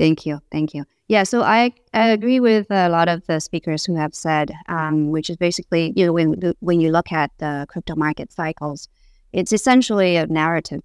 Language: English